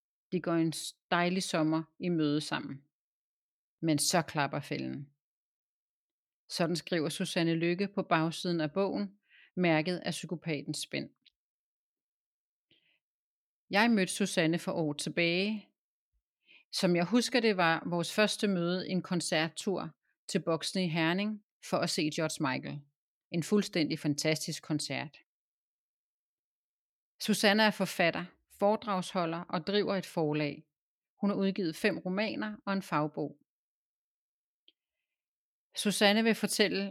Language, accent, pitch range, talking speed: Danish, native, 150-195 Hz, 120 wpm